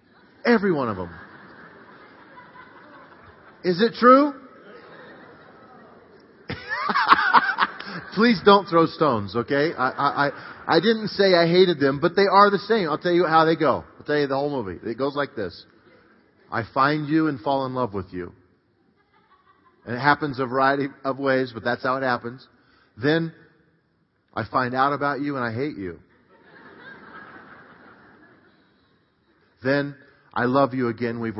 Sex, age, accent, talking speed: male, 40-59, American, 150 wpm